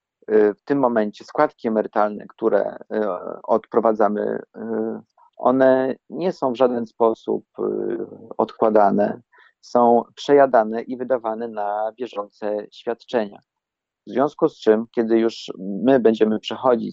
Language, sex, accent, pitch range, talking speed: Polish, male, native, 105-125 Hz, 105 wpm